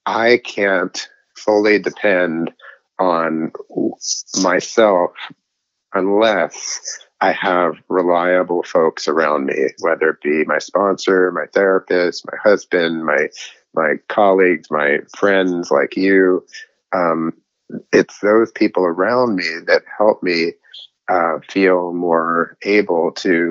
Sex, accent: male, American